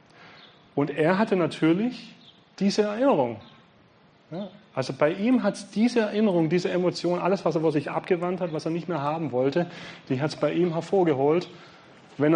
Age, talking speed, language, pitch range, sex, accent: 30-49, 170 wpm, German, 130-170 Hz, male, German